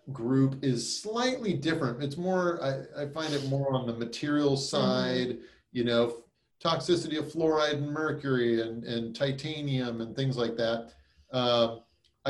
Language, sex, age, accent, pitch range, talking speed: English, male, 40-59, American, 125-155 Hz, 145 wpm